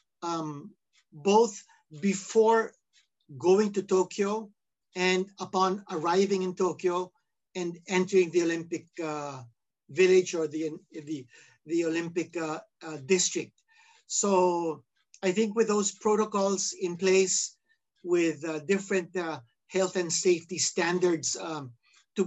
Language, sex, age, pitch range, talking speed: Filipino, male, 50-69, 165-200 Hz, 115 wpm